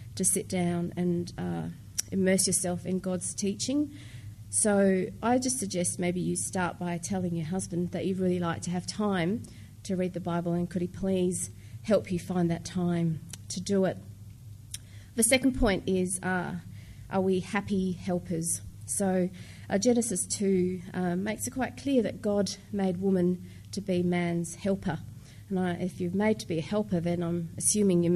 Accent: Australian